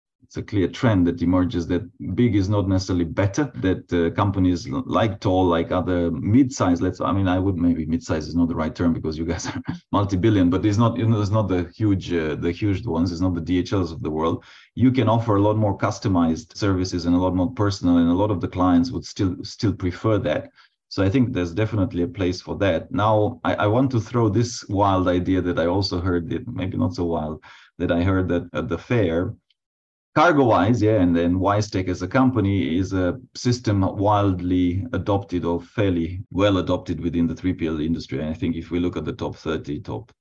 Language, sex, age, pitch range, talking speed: English, male, 30-49, 85-110 Hz, 220 wpm